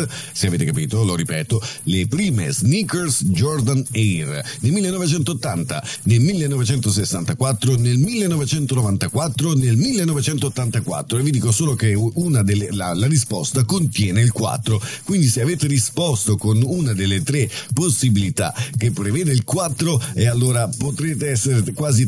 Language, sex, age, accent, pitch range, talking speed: Italian, male, 50-69, native, 110-150 Hz, 130 wpm